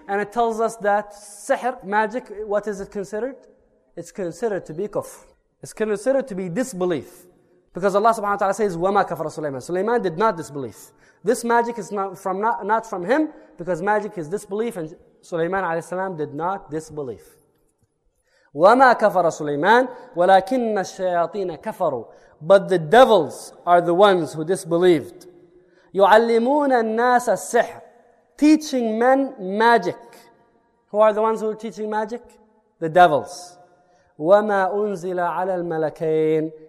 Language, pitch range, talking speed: English, 165-220 Hz, 140 wpm